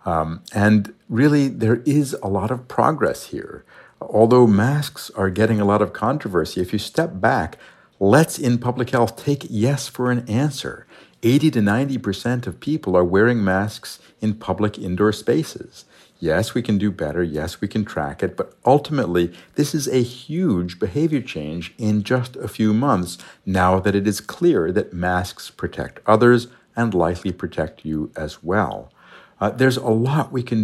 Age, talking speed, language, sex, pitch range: 60-79, 170 wpm, English, male, 95-120 Hz